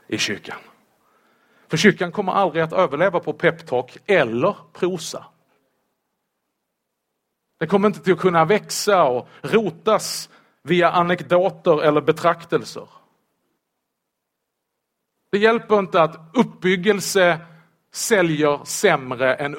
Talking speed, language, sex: 100 wpm, Swedish, male